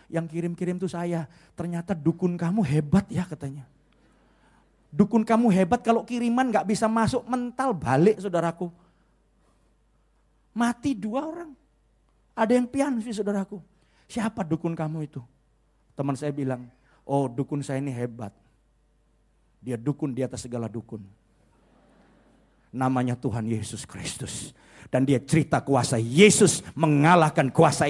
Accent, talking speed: native, 125 wpm